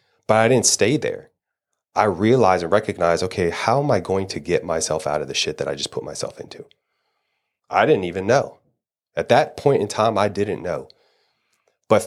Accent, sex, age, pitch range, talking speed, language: American, male, 30-49, 95-120 Hz, 200 wpm, English